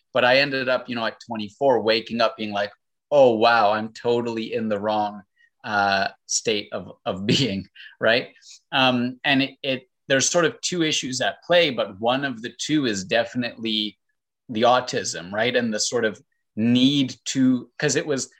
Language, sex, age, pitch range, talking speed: English, male, 30-49, 115-140 Hz, 180 wpm